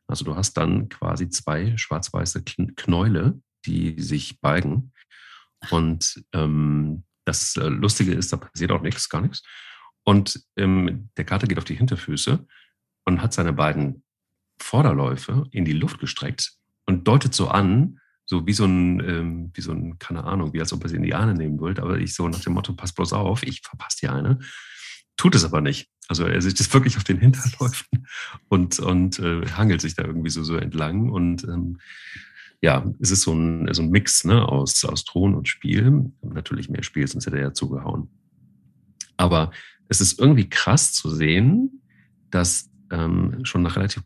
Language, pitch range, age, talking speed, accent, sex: German, 85-120 Hz, 40-59, 180 wpm, German, male